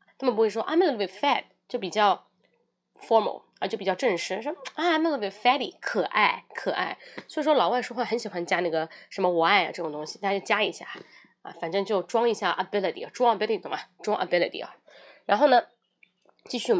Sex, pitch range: female, 200-325 Hz